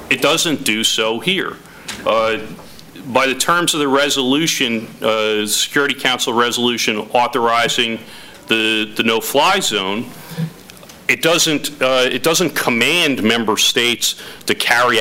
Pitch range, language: 110-140 Hz, English